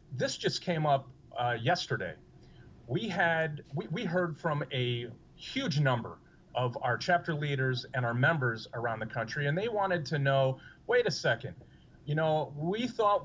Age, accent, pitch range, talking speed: 40-59, American, 130-170 Hz, 170 wpm